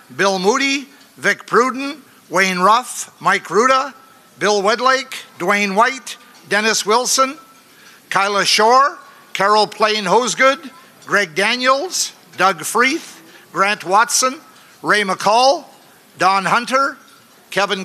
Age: 50-69